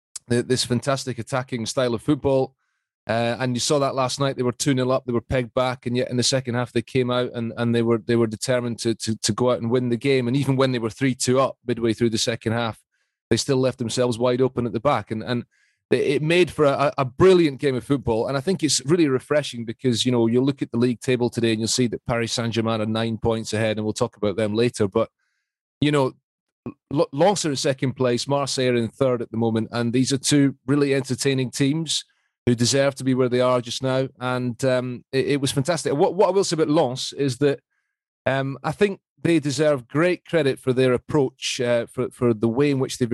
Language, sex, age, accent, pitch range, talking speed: English, male, 30-49, British, 115-135 Hz, 245 wpm